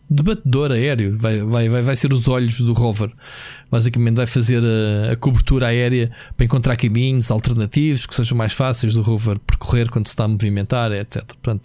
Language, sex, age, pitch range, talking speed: Portuguese, male, 20-39, 120-145 Hz, 175 wpm